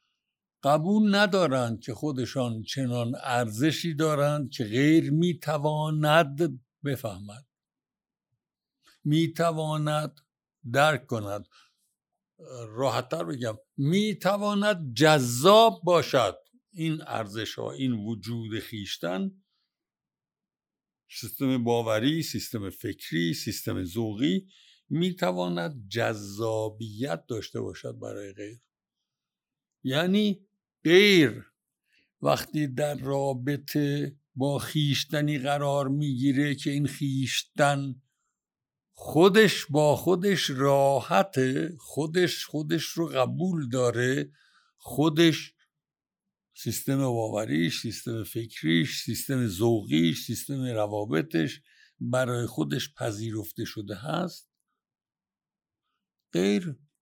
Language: Persian